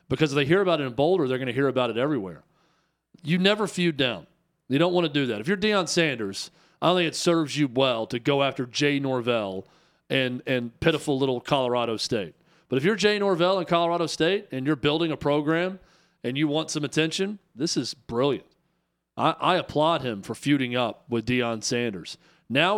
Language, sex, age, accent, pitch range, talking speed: English, male, 40-59, American, 130-170 Hz, 210 wpm